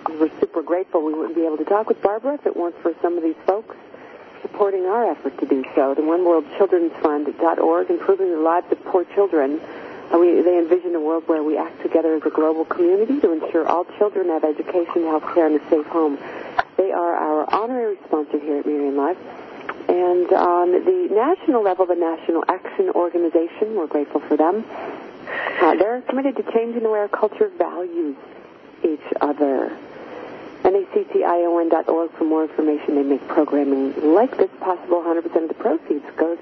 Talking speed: 175 wpm